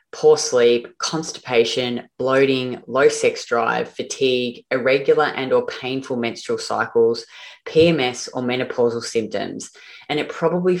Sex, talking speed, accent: female, 115 wpm, Australian